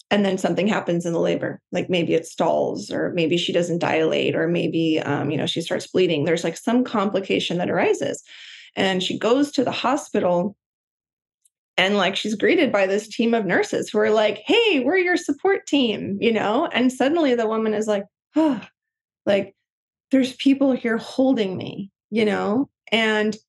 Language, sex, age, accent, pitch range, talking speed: English, female, 20-39, American, 195-245 Hz, 180 wpm